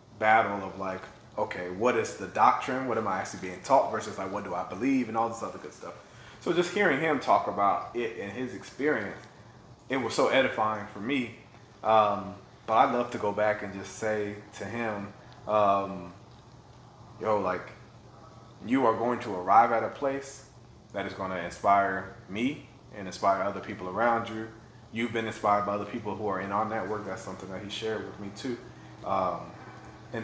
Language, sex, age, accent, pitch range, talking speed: English, male, 30-49, American, 95-115 Hz, 195 wpm